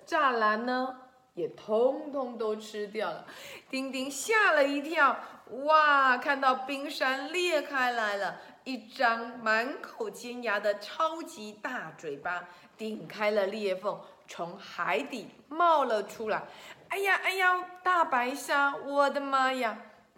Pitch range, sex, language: 205-280 Hz, female, Chinese